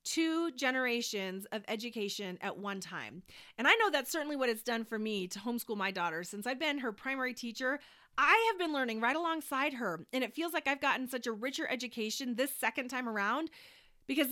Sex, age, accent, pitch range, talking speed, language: female, 30-49, American, 205-290 Hz, 205 wpm, English